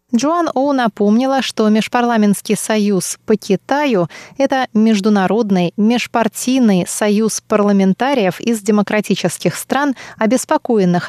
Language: Russian